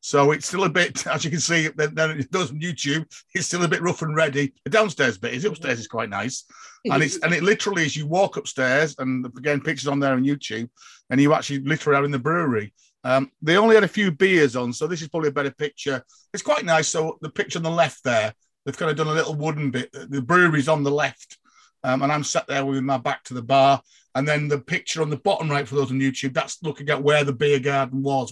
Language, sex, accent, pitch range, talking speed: English, male, British, 135-160 Hz, 255 wpm